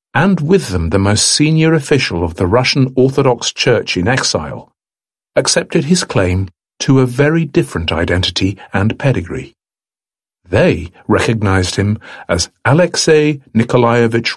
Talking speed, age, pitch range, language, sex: 125 wpm, 50-69, 100-140 Hz, English, male